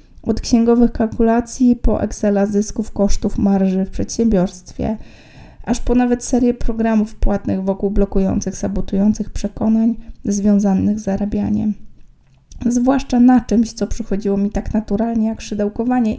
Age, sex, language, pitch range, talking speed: 20-39, female, Polish, 205-240 Hz, 120 wpm